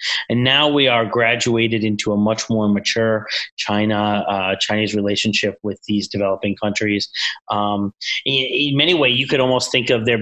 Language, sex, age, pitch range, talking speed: English, male, 30-49, 105-120 Hz, 170 wpm